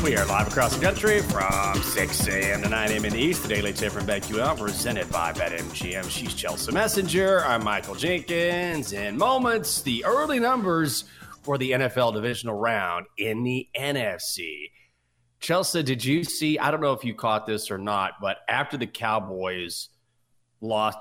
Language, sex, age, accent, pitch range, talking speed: English, male, 30-49, American, 100-125 Hz, 170 wpm